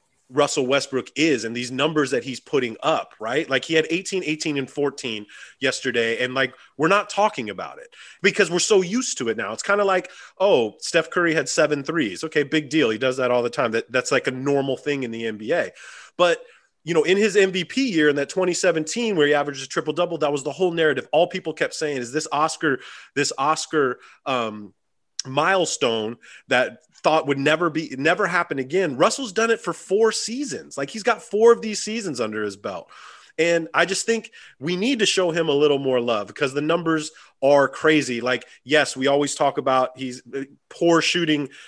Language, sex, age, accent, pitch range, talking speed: English, male, 30-49, American, 135-185 Hz, 205 wpm